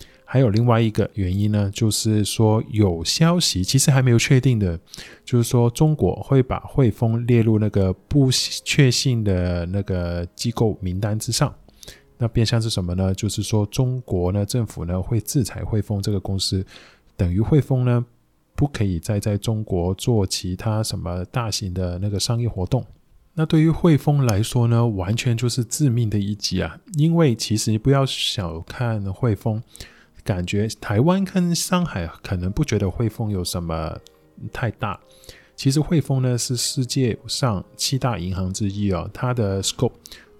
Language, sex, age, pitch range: Chinese, male, 20-39, 95-125 Hz